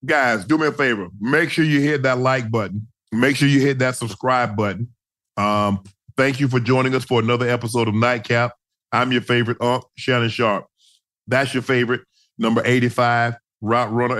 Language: English